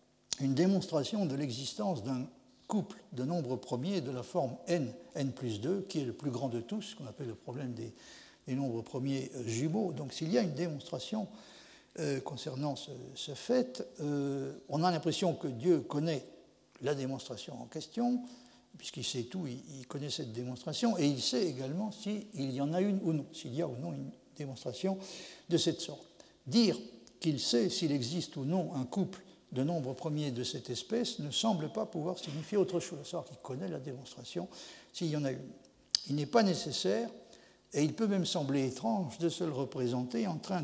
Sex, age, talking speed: male, 60-79, 195 wpm